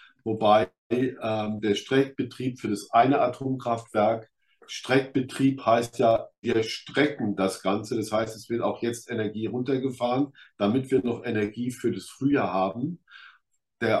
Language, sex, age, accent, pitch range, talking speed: German, male, 50-69, German, 110-130 Hz, 135 wpm